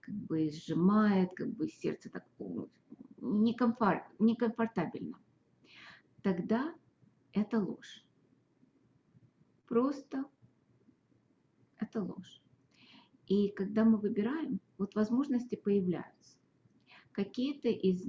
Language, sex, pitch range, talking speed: English, female, 185-235 Hz, 85 wpm